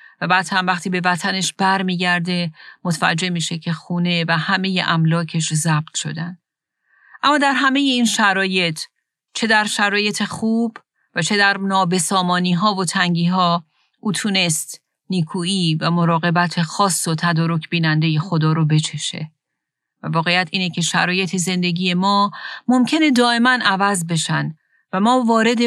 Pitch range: 170-205 Hz